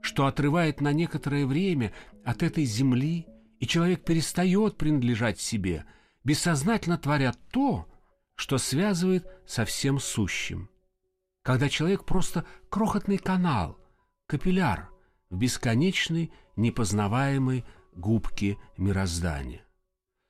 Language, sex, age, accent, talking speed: Russian, male, 50-69, native, 95 wpm